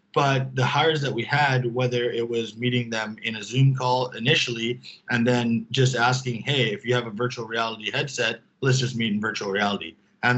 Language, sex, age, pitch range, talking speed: English, male, 20-39, 115-130 Hz, 200 wpm